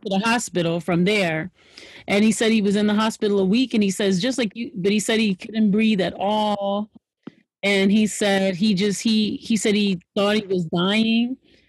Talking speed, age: 210 wpm, 30-49